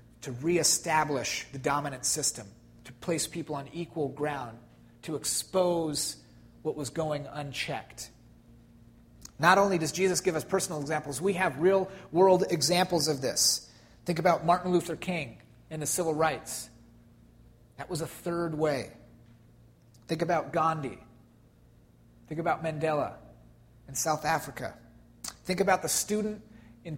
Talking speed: 135 wpm